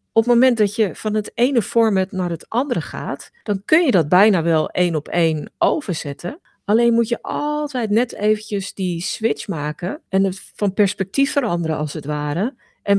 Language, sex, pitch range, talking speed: Dutch, female, 160-220 Hz, 190 wpm